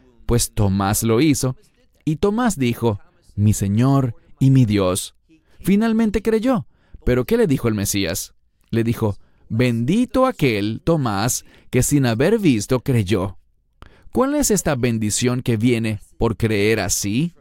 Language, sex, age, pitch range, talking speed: English, male, 40-59, 110-150 Hz, 135 wpm